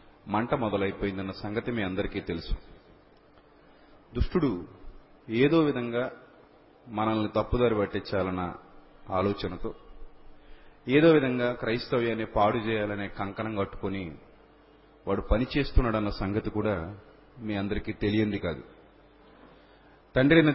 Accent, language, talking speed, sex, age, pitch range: native, Telugu, 85 wpm, male, 30-49, 100-125 Hz